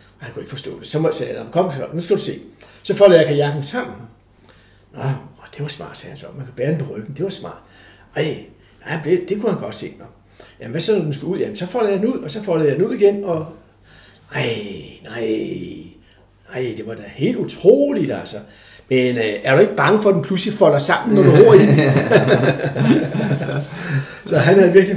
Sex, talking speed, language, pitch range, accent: male, 220 wpm, Danish, 135-185 Hz, native